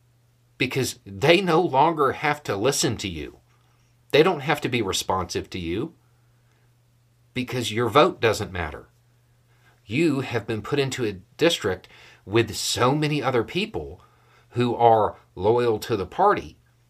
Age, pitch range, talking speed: 50-69, 110-120 Hz, 140 wpm